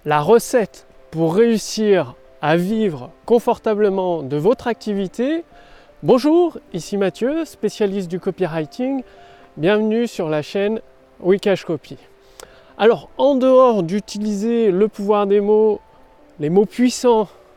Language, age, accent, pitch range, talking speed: French, 30-49, French, 160-225 Hz, 110 wpm